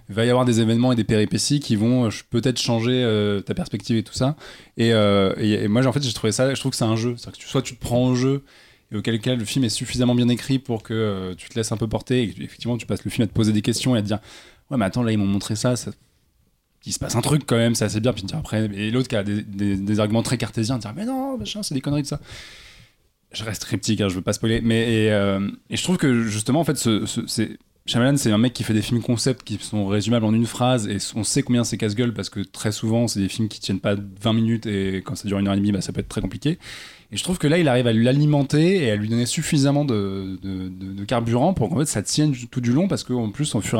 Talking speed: 295 wpm